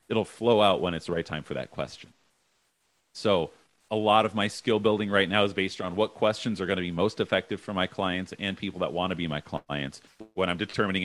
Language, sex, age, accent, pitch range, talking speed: English, male, 30-49, American, 95-120 Hz, 245 wpm